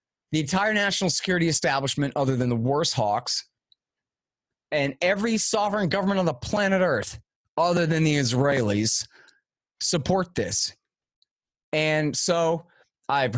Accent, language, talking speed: American, English, 120 wpm